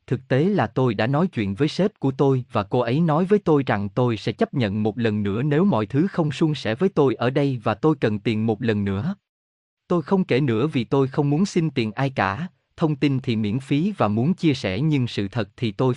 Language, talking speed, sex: Vietnamese, 255 wpm, male